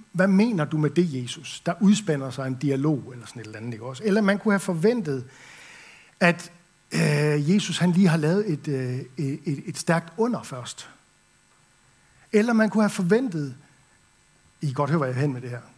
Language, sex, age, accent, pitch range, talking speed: Danish, male, 60-79, native, 140-180 Hz, 185 wpm